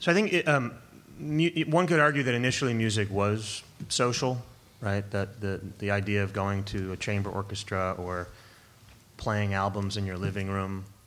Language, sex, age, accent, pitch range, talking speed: English, male, 30-49, American, 105-125 Hz, 165 wpm